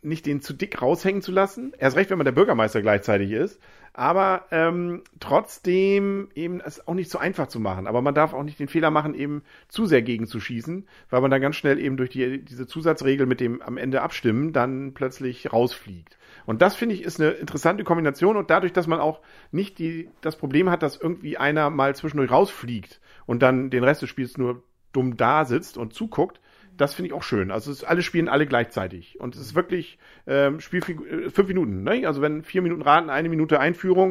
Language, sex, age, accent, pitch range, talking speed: German, male, 40-59, German, 120-165 Hz, 215 wpm